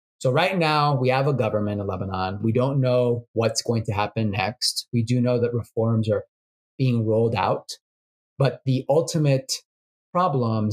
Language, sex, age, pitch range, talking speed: English, male, 30-49, 110-135 Hz, 170 wpm